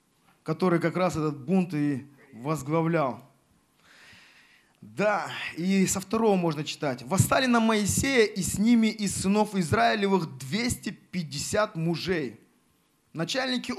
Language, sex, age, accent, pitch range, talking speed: Russian, male, 20-39, native, 165-215 Hz, 110 wpm